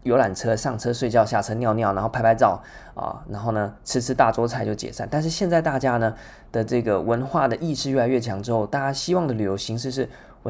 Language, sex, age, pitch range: Chinese, male, 20-39, 105-135 Hz